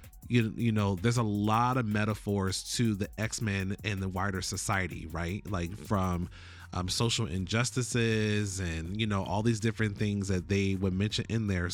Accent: American